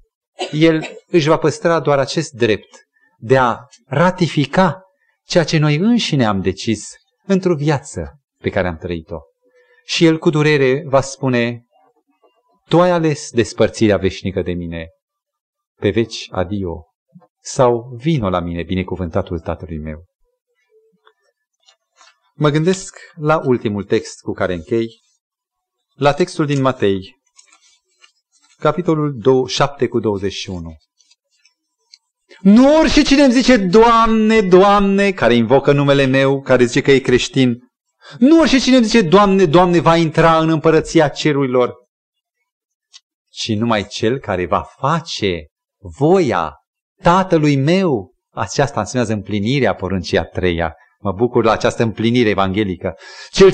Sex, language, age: male, Romanian, 30-49